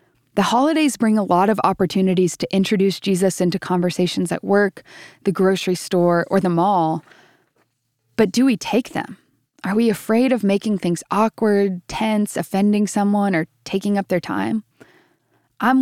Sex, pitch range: female, 175-215 Hz